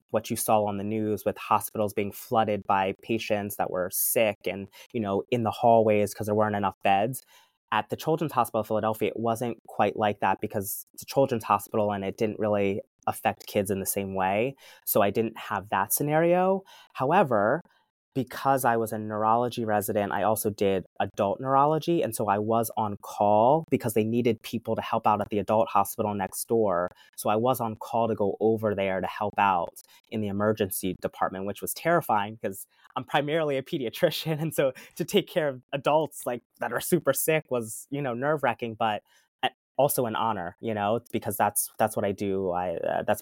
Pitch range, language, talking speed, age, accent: 100-120 Hz, English, 200 wpm, 20-39, American